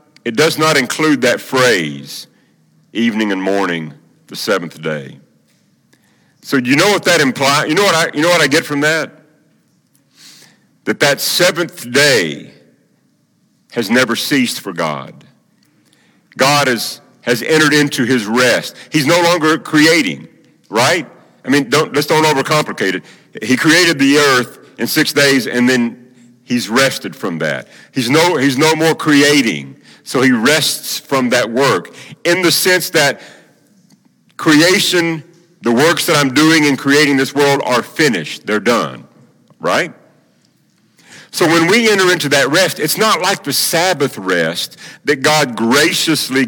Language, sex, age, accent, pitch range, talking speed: English, male, 50-69, American, 130-160 Hz, 150 wpm